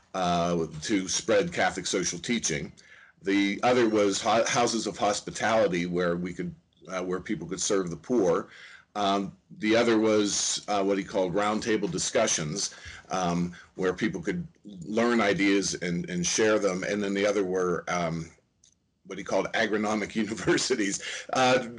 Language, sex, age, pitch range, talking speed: English, male, 40-59, 95-115 Hz, 150 wpm